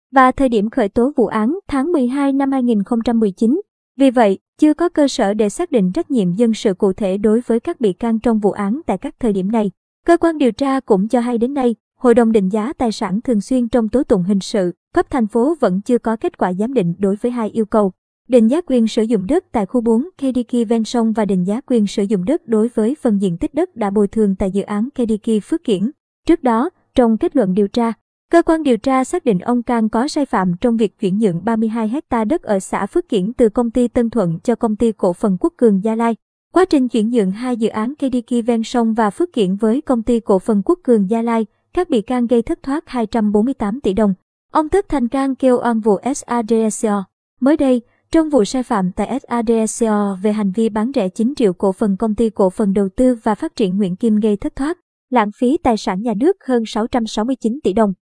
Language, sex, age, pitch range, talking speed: Vietnamese, male, 20-39, 215-255 Hz, 240 wpm